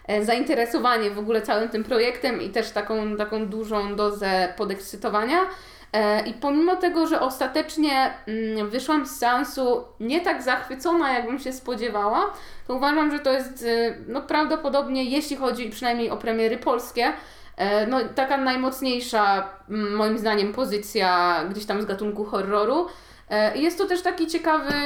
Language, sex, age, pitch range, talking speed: Polish, female, 20-39, 210-265 Hz, 135 wpm